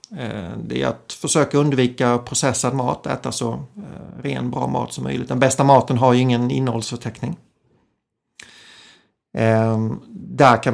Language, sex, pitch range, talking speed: Swedish, male, 115-140 Hz, 130 wpm